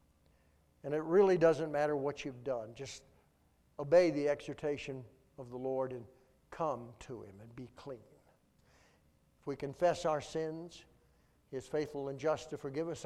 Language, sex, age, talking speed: English, male, 60-79, 160 wpm